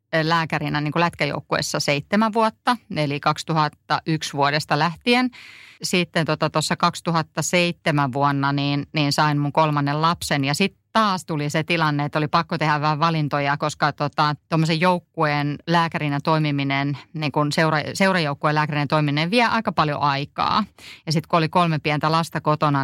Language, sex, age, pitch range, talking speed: Finnish, female, 30-49, 150-175 Hz, 145 wpm